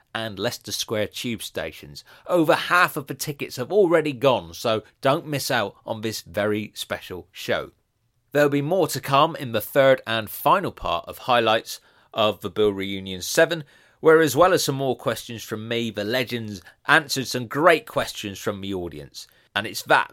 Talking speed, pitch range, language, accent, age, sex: 180 wpm, 110-150 Hz, English, British, 30-49, male